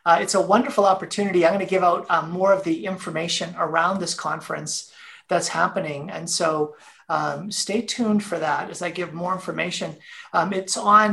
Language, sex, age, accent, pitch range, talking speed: English, male, 40-59, American, 165-205 Hz, 190 wpm